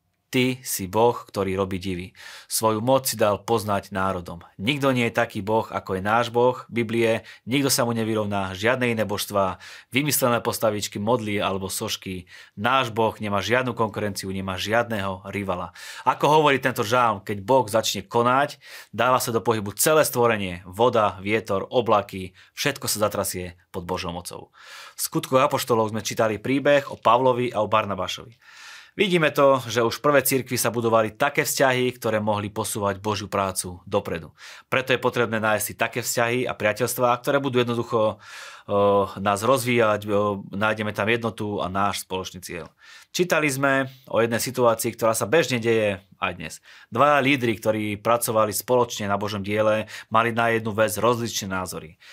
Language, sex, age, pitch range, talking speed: Slovak, male, 30-49, 100-125 Hz, 160 wpm